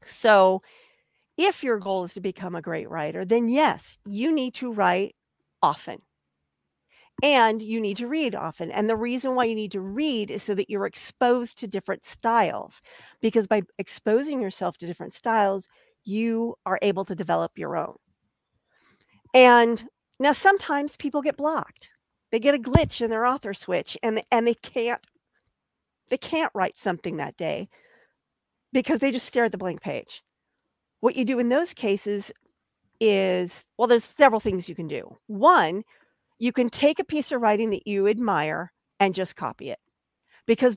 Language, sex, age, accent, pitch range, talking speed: English, female, 50-69, American, 200-265 Hz, 170 wpm